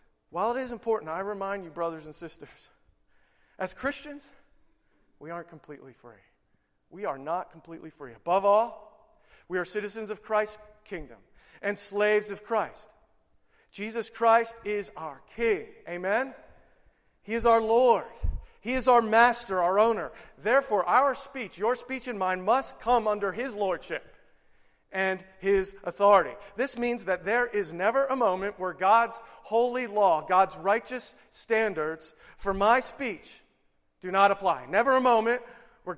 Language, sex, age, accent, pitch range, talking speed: English, male, 40-59, American, 195-235 Hz, 150 wpm